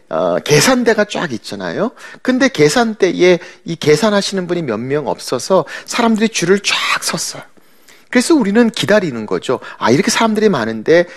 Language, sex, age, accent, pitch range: Korean, male, 40-59, native, 150-235 Hz